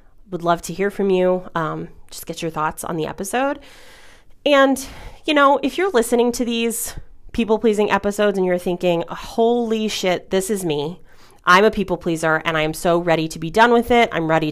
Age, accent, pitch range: 30-49, American, 165-210 Hz